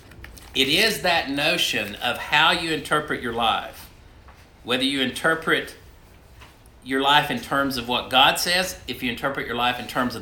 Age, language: 50-69, English